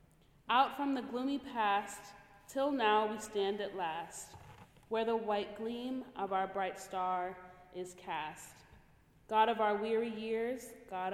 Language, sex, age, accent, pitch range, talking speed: English, female, 20-39, American, 190-235 Hz, 145 wpm